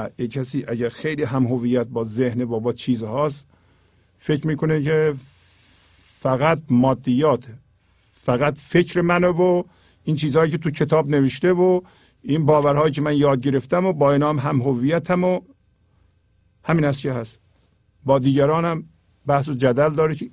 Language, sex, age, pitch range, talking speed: English, male, 50-69, 105-160 Hz, 145 wpm